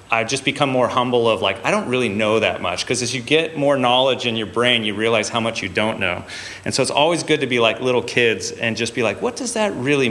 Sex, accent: male, American